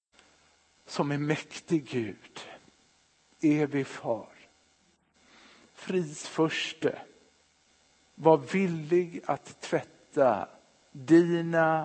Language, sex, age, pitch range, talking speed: Swedish, male, 60-79, 125-185 Hz, 60 wpm